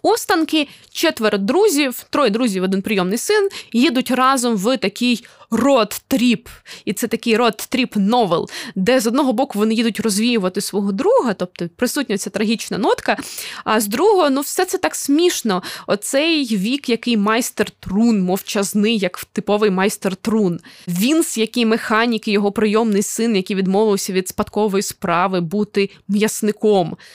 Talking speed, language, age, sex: 135 wpm, Ukrainian, 20-39, female